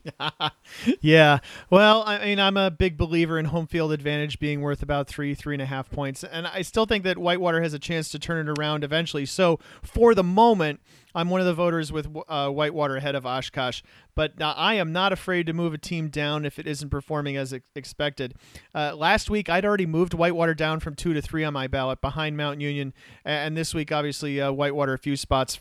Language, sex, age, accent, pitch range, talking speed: English, male, 40-59, American, 135-180 Hz, 225 wpm